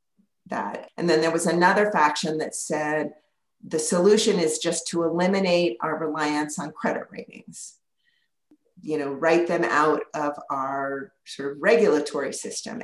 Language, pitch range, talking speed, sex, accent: English, 155-205 Hz, 145 wpm, female, American